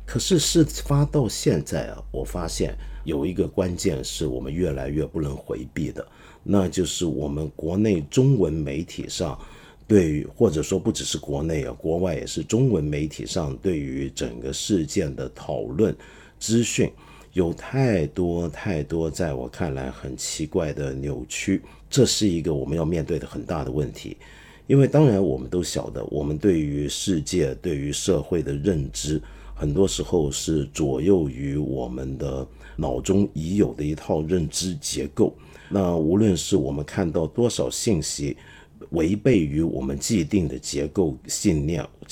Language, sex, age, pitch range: Chinese, male, 50-69, 70-95 Hz